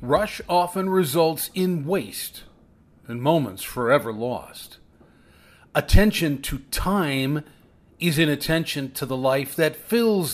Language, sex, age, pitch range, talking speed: English, male, 40-59, 125-175 Hz, 115 wpm